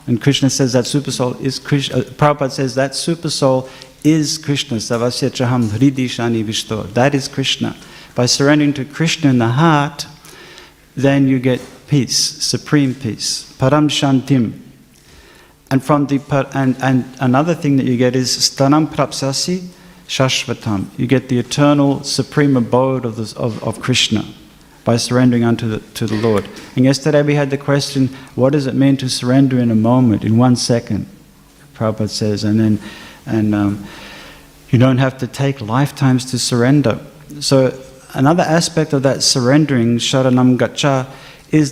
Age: 50-69